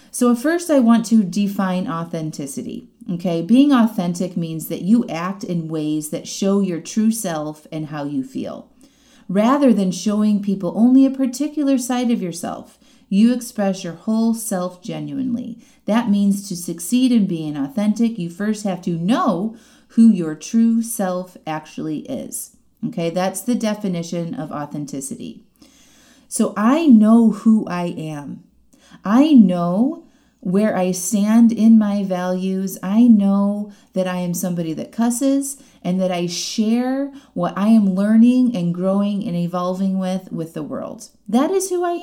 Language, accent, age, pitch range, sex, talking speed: English, American, 30-49, 185-245 Hz, female, 155 wpm